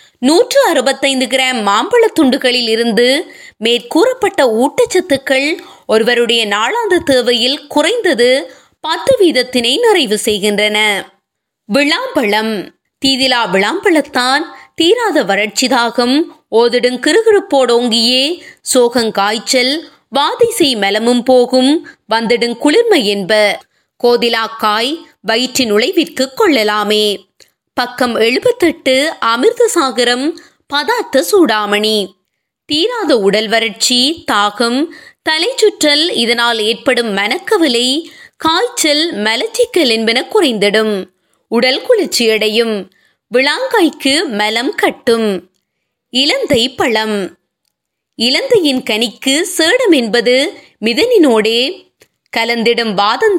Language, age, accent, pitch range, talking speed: Tamil, 20-39, native, 225-325 Hz, 45 wpm